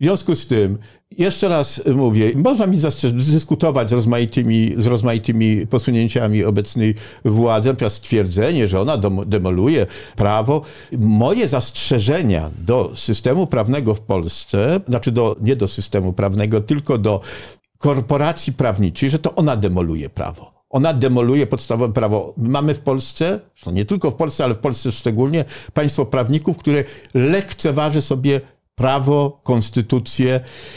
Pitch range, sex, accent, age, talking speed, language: 115-160 Hz, male, native, 50-69, 140 wpm, Polish